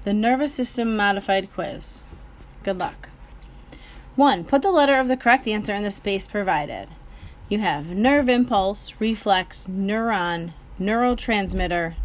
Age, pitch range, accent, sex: 30-49, 175-225 Hz, American, female